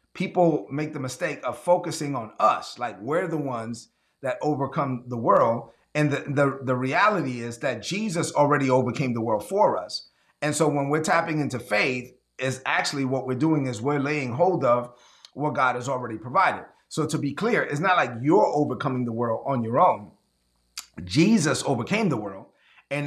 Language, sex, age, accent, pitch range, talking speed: English, male, 30-49, American, 125-160 Hz, 180 wpm